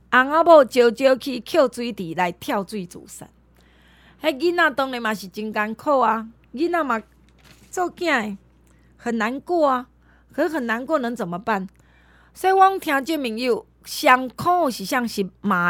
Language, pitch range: Chinese, 225-330 Hz